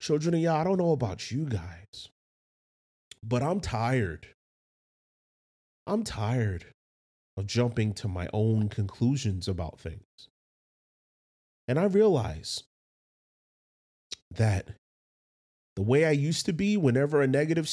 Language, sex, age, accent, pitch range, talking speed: English, male, 30-49, American, 100-140 Hz, 120 wpm